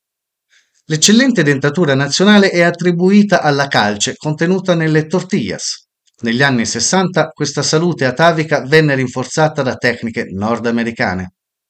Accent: native